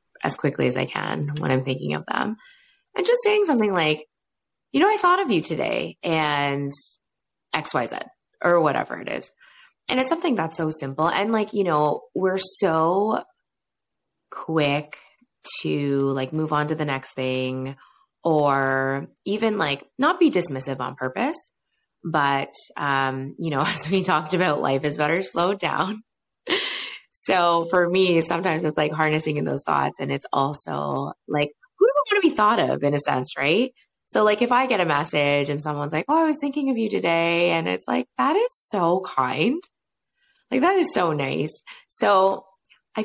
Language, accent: English, American